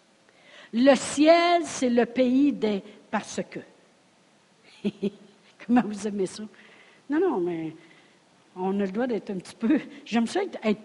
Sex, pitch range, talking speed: female, 250-330 Hz, 150 wpm